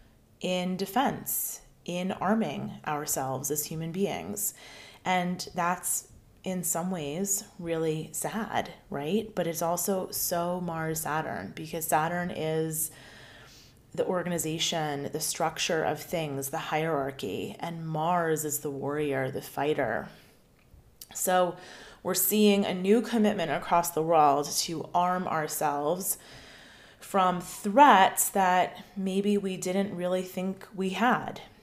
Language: English